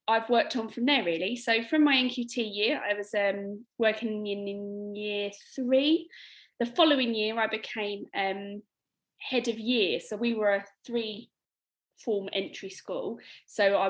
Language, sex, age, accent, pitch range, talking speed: English, female, 20-39, British, 200-255 Hz, 165 wpm